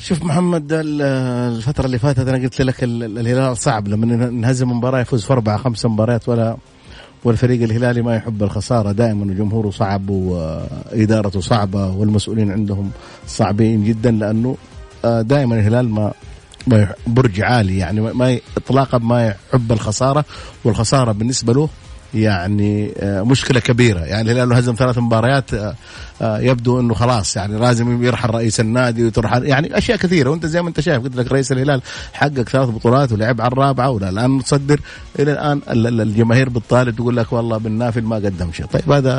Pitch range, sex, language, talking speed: 105-130 Hz, male, Arabic, 150 wpm